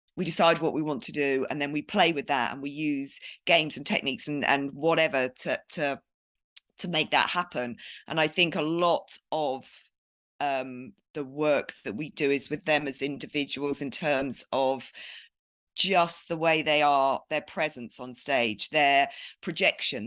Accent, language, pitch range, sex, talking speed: British, English, 145-175 Hz, female, 175 wpm